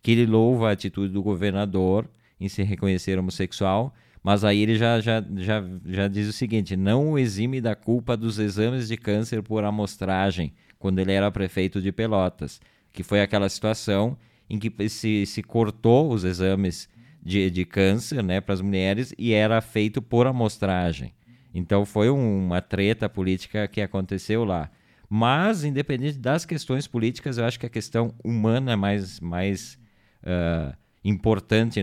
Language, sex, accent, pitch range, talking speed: Portuguese, male, Brazilian, 100-125 Hz, 155 wpm